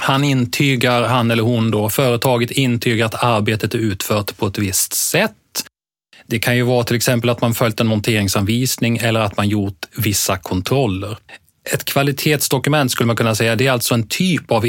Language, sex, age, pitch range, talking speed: Swedish, male, 30-49, 105-130 Hz, 185 wpm